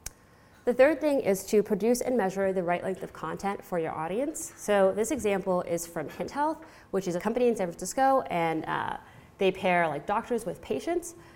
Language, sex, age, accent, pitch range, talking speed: English, female, 20-39, American, 165-200 Hz, 200 wpm